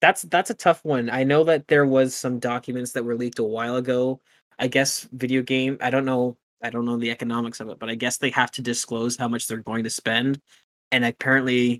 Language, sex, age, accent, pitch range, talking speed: English, male, 20-39, American, 115-130 Hz, 240 wpm